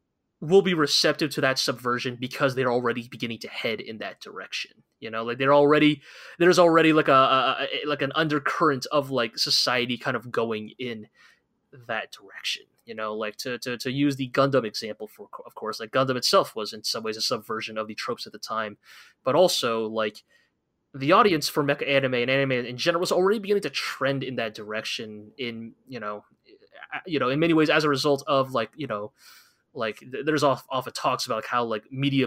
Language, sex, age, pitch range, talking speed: English, male, 20-39, 115-140 Hz, 210 wpm